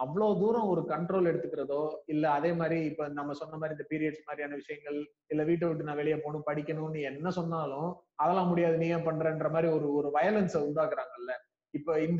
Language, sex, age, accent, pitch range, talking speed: Tamil, male, 30-49, native, 150-190 Hz, 115 wpm